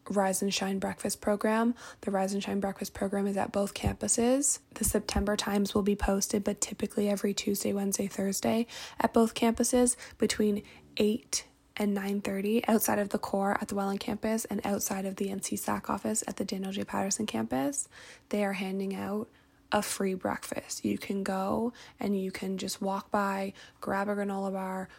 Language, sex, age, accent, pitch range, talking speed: English, female, 10-29, American, 195-220 Hz, 180 wpm